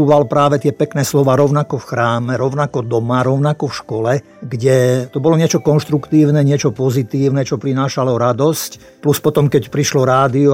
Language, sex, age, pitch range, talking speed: Slovak, male, 50-69, 125-145 Hz, 155 wpm